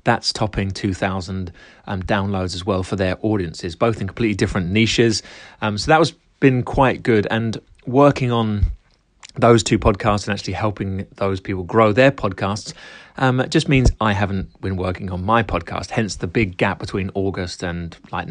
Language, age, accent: English, 30-49, British